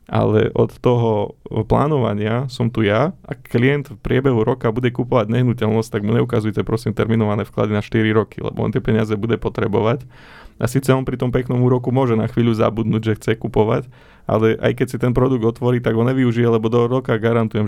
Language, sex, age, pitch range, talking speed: Slovak, male, 20-39, 110-125 Hz, 195 wpm